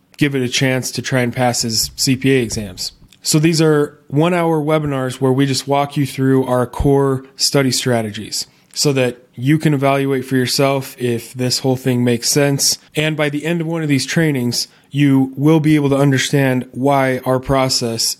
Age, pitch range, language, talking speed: 20-39, 125-140 Hz, English, 190 wpm